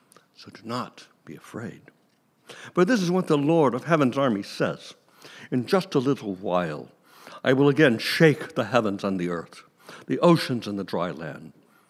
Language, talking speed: English, 175 wpm